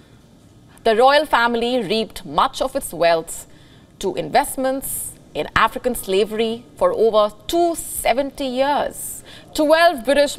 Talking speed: 110 wpm